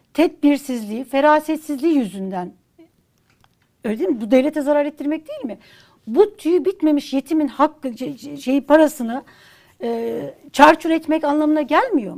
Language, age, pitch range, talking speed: Turkish, 60-79, 255-315 Hz, 120 wpm